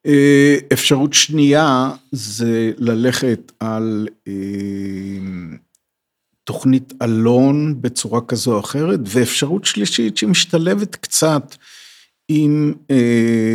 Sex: male